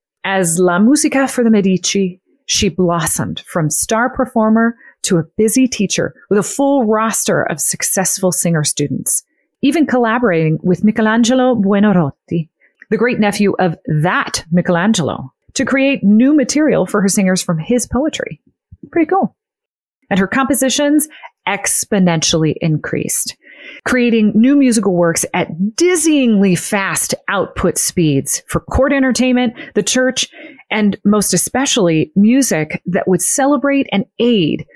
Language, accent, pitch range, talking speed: English, American, 180-255 Hz, 130 wpm